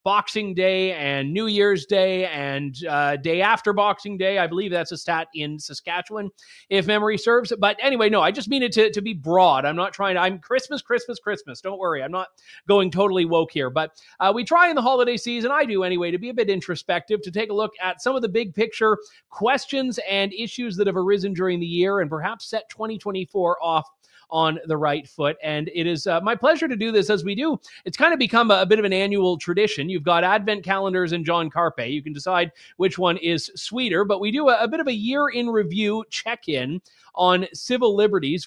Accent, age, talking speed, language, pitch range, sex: American, 30-49, 225 wpm, English, 170-215 Hz, male